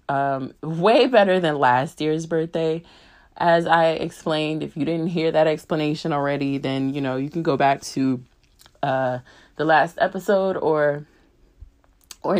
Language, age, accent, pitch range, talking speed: English, 20-39, American, 150-200 Hz, 150 wpm